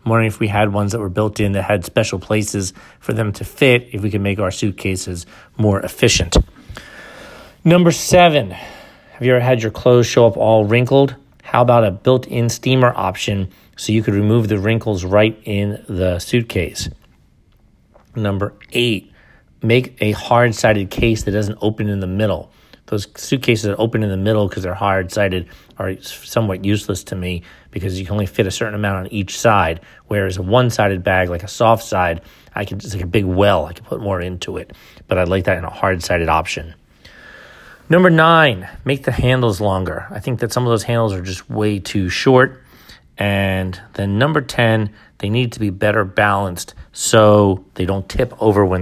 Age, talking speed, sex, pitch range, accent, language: 40-59, 190 wpm, male, 95-115 Hz, American, English